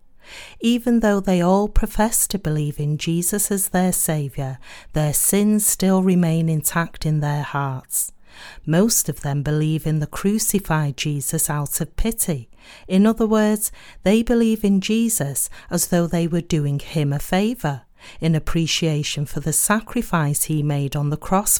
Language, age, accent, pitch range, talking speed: English, 40-59, British, 150-210 Hz, 155 wpm